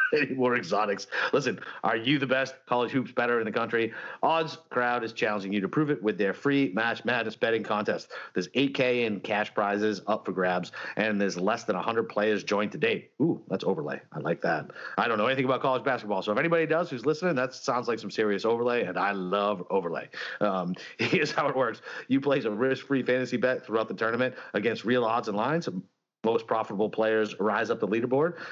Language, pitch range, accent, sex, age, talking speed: English, 110-130 Hz, American, male, 40-59, 215 wpm